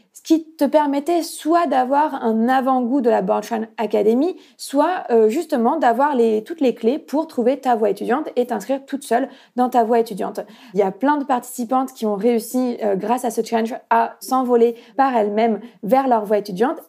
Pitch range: 220-260 Hz